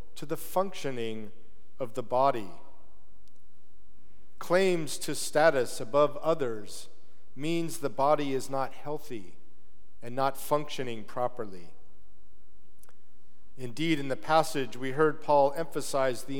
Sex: male